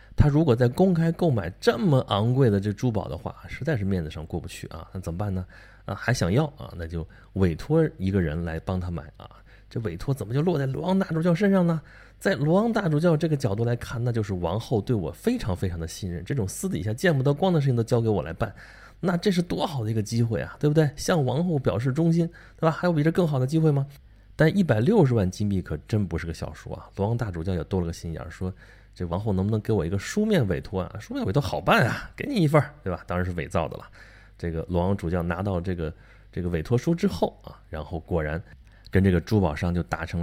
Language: Chinese